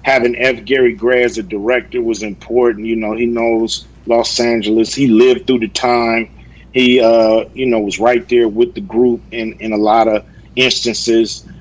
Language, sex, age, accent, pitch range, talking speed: English, male, 40-59, American, 115-130 Hz, 185 wpm